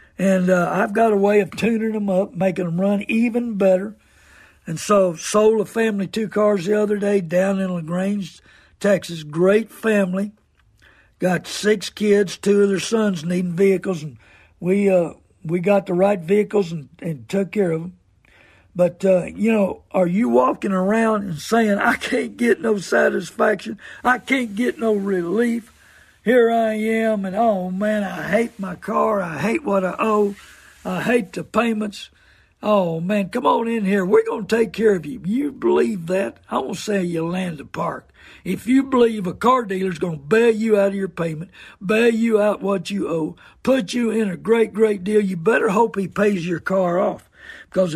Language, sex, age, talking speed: English, male, 60-79, 190 wpm